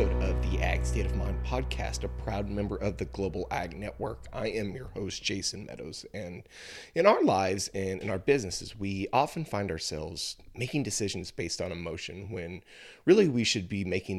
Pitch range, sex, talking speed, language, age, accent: 90-110 Hz, male, 185 wpm, English, 30-49, American